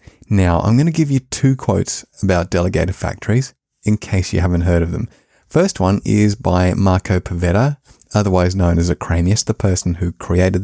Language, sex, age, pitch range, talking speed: English, male, 30-49, 90-120 Hz, 180 wpm